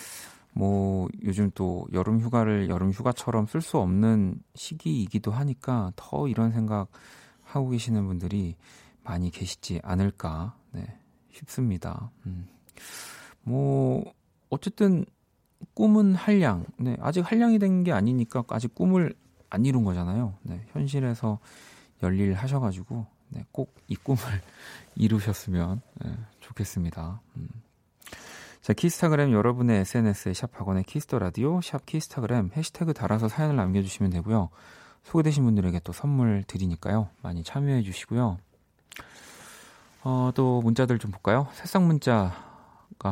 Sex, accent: male, native